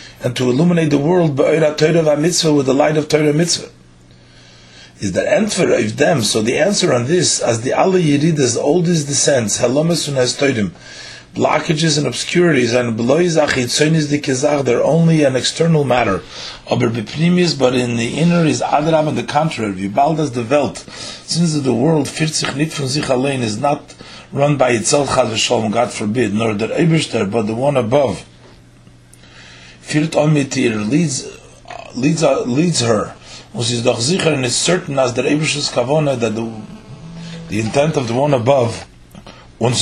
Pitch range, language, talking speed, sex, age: 110-150 Hz, English, 150 wpm, male, 40-59